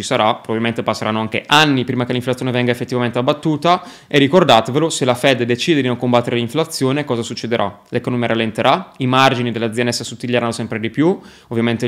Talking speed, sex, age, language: 170 wpm, male, 20-39, Italian